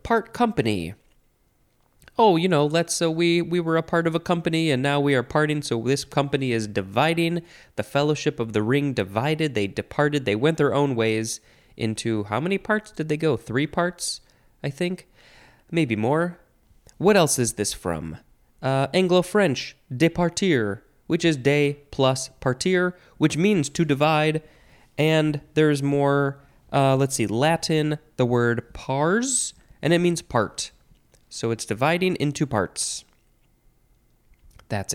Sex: male